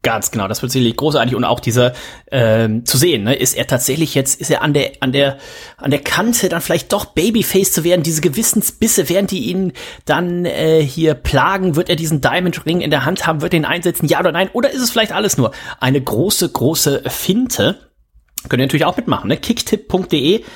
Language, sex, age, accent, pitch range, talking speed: German, male, 30-49, German, 135-180 Hz, 215 wpm